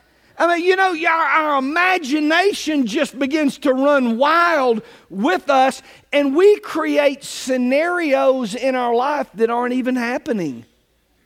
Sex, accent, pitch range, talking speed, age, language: male, American, 155-245 Hz, 135 wpm, 50-69, English